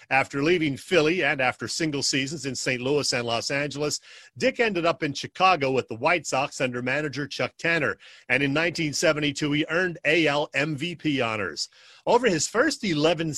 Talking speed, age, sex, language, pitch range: 170 wpm, 40-59, male, English, 140-175 Hz